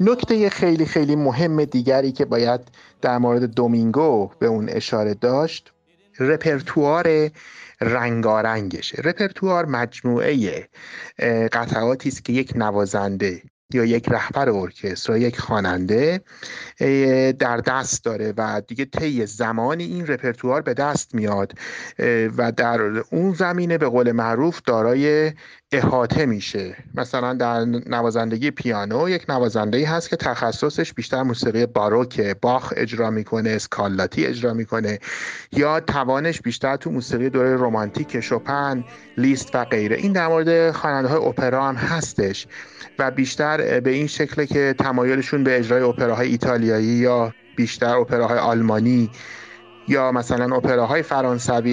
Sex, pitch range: male, 115-145 Hz